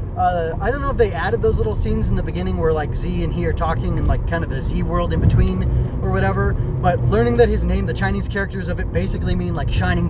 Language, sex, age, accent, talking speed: English, male, 20-39, American, 265 wpm